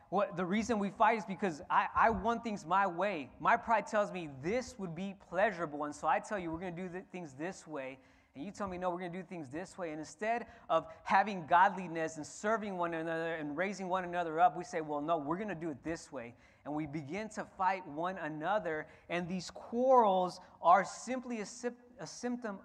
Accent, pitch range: American, 125-185 Hz